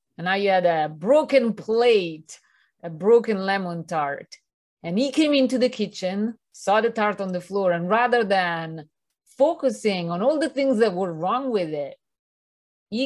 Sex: female